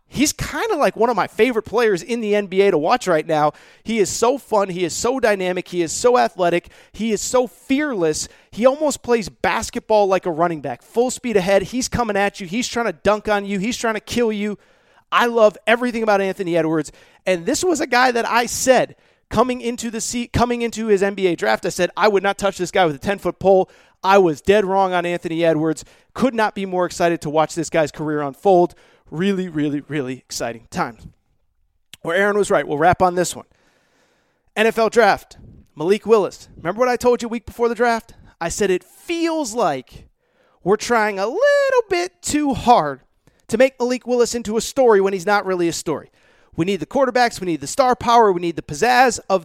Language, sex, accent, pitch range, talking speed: English, male, American, 175-240 Hz, 215 wpm